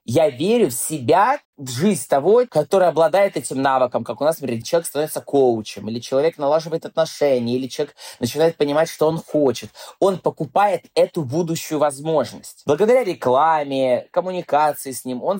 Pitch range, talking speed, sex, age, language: 130-185 Hz, 155 wpm, male, 20-39, Russian